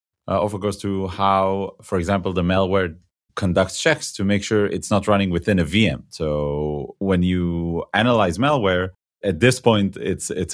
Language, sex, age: English, male, 30-49